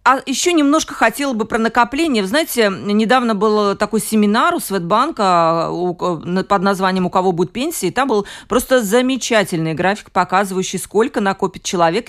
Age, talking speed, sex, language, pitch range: 40-59, 150 wpm, female, Russian, 185-240 Hz